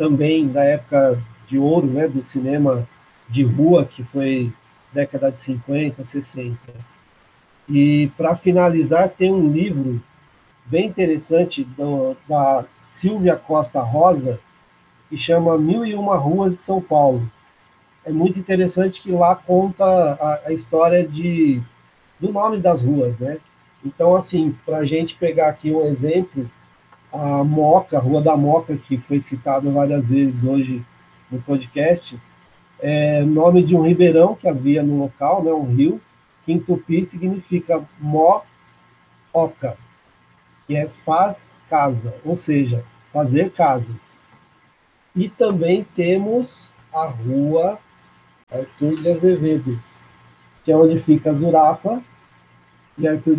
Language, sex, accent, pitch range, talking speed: Portuguese, male, Brazilian, 130-170 Hz, 130 wpm